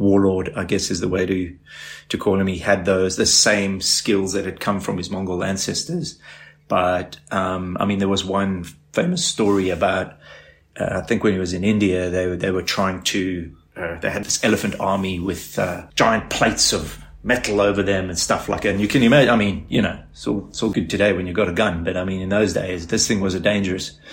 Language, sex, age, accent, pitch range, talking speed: English, male, 30-49, British, 90-110 Hz, 235 wpm